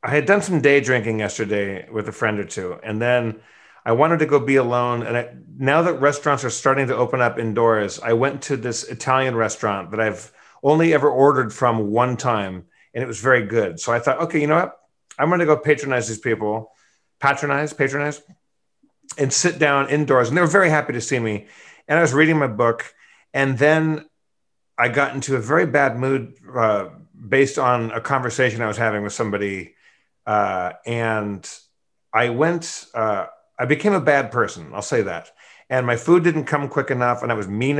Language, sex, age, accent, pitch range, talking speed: English, male, 40-59, American, 115-140 Hz, 200 wpm